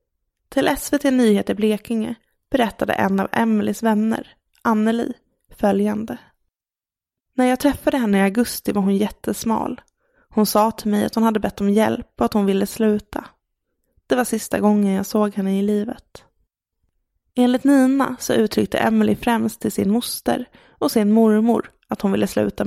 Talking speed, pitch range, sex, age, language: 160 wpm, 205-235 Hz, female, 20-39, English